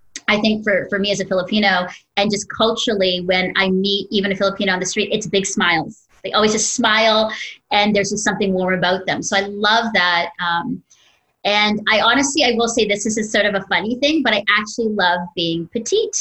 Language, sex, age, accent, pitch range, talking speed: English, female, 30-49, American, 185-225 Hz, 220 wpm